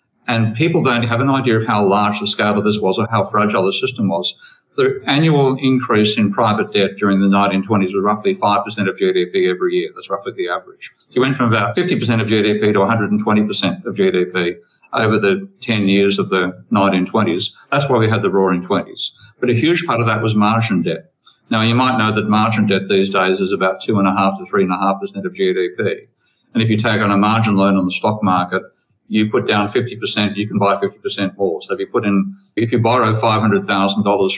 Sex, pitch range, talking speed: male, 100-130 Hz, 210 wpm